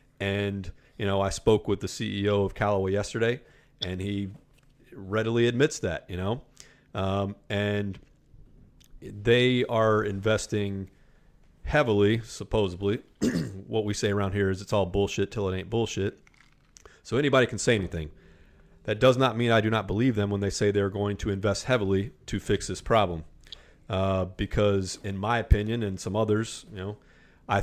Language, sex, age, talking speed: English, male, 40-59, 165 wpm